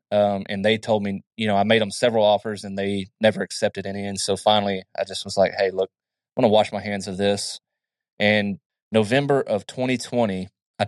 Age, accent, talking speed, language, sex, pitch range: 20-39, American, 215 wpm, English, male, 100-110 Hz